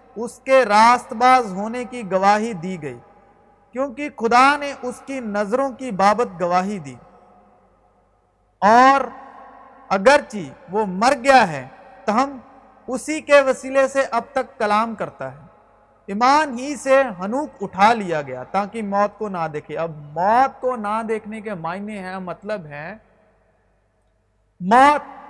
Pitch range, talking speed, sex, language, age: 190-265 Hz, 140 wpm, male, Urdu, 50-69